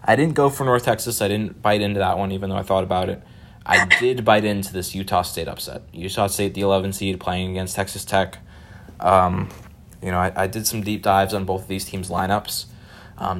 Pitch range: 95-105 Hz